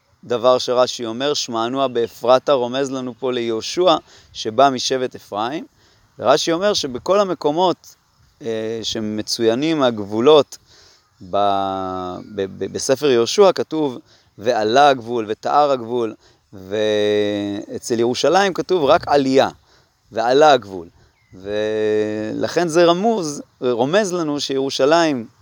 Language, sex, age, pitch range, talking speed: Hebrew, male, 30-49, 110-150 Hz, 100 wpm